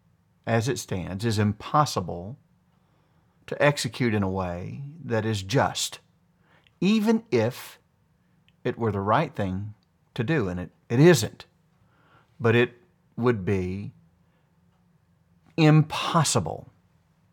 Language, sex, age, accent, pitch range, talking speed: English, male, 50-69, American, 110-140 Hz, 105 wpm